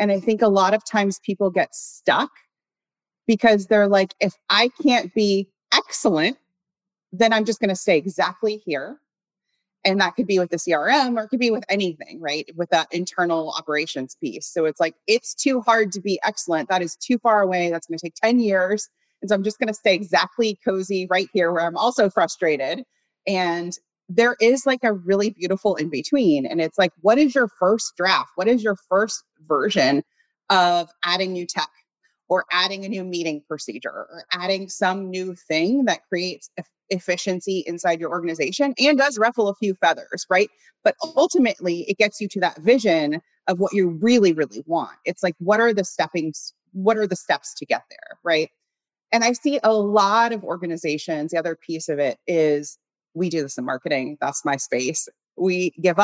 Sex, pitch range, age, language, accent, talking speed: female, 175-220 Hz, 30-49, English, American, 195 wpm